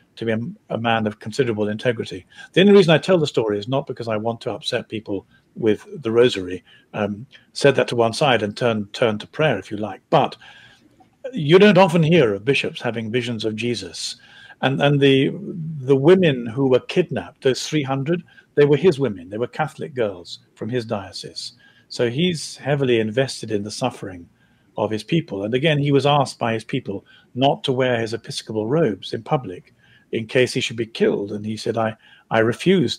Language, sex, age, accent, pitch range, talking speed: English, male, 50-69, British, 110-145 Hz, 200 wpm